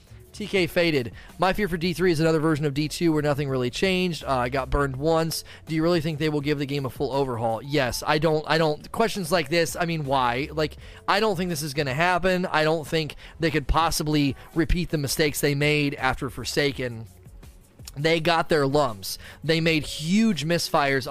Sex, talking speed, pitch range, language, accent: male, 210 wpm, 130-165 Hz, English, American